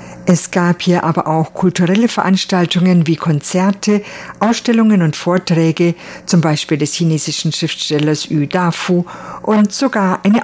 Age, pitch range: 50-69, 165-195 Hz